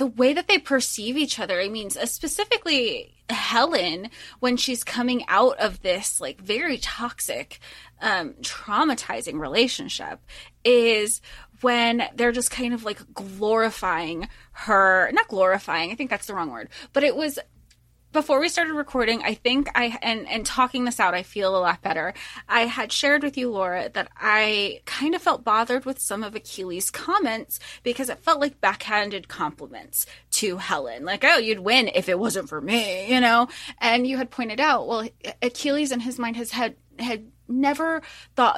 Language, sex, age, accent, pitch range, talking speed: English, female, 20-39, American, 200-255 Hz, 175 wpm